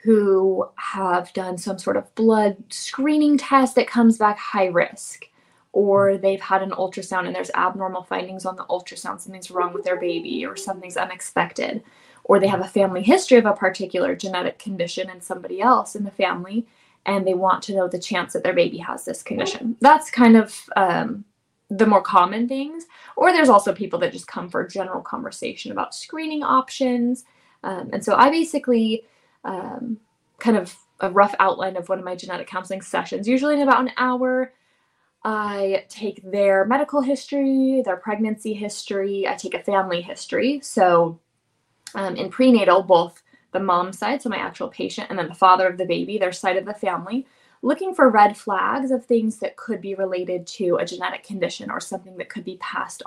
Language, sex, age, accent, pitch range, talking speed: English, female, 10-29, American, 185-255 Hz, 185 wpm